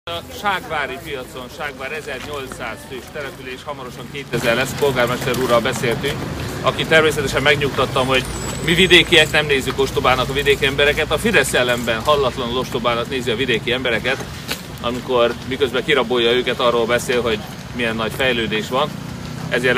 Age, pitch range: 30-49, 120-145 Hz